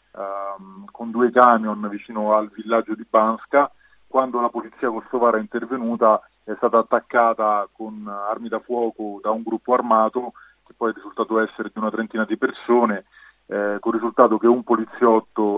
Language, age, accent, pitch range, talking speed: Italian, 30-49, native, 110-120 Hz, 160 wpm